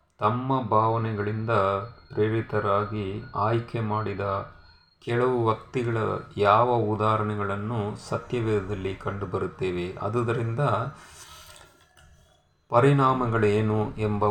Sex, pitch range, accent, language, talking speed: male, 100-120 Hz, native, Kannada, 60 wpm